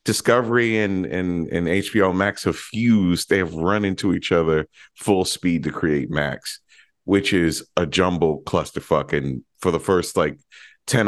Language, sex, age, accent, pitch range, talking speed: English, male, 40-59, American, 80-100 Hz, 160 wpm